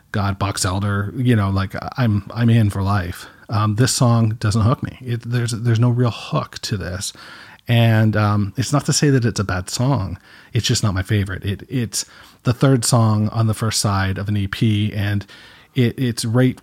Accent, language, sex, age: American, English, male, 40-59